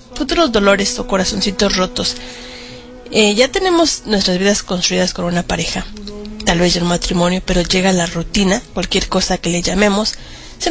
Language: Spanish